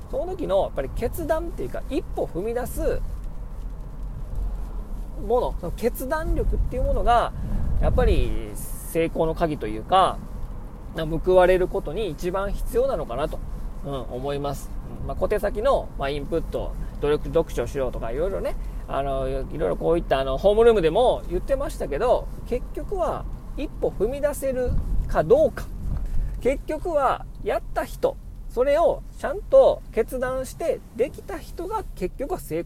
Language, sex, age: Japanese, male, 40-59